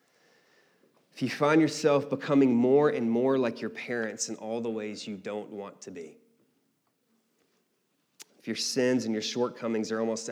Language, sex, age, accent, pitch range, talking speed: English, male, 30-49, American, 115-140 Hz, 155 wpm